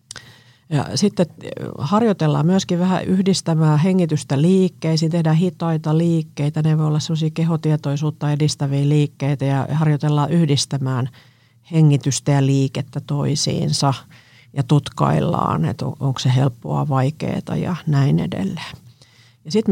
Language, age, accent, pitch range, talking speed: Finnish, 50-69, native, 135-160 Hz, 105 wpm